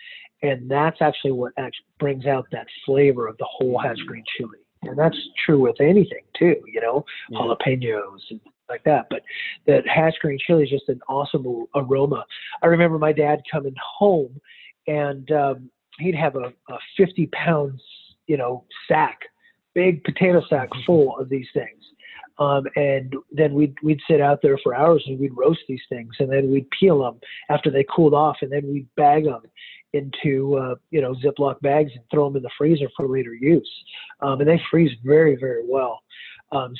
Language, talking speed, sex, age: English, 185 wpm, male, 40-59